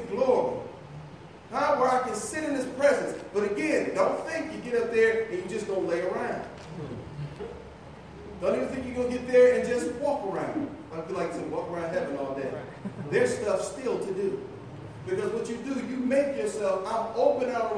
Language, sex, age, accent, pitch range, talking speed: English, male, 40-59, American, 210-275 Hz, 200 wpm